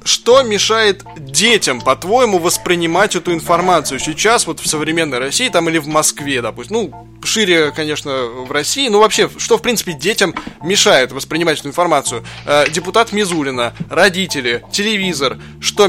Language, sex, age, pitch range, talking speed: Russian, male, 20-39, 150-195 Hz, 140 wpm